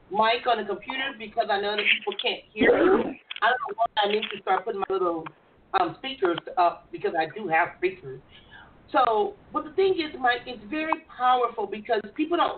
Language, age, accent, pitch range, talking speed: English, 40-59, American, 220-335 Hz, 200 wpm